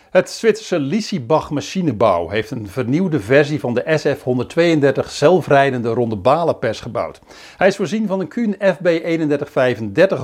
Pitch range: 130-180 Hz